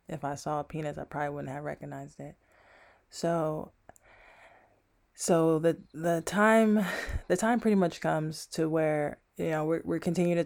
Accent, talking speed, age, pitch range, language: American, 165 wpm, 20-39, 155-180 Hz, English